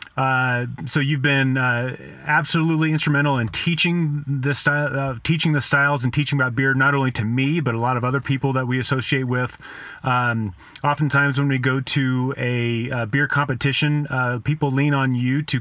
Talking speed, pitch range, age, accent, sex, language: 190 wpm, 125-145 Hz, 30-49, American, male, English